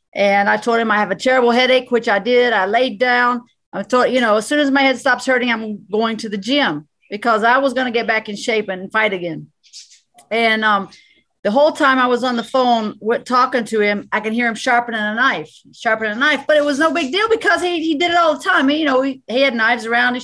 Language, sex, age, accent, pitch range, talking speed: English, female, 40-59, American, 220-260 Hz, 265 wpm